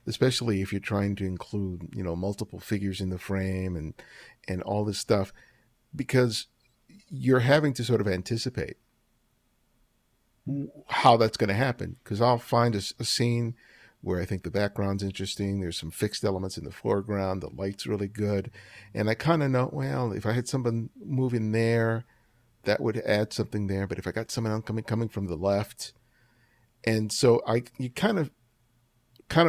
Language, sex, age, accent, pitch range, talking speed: English, male, 50-69, American, 100-125 Hz, 175 wpm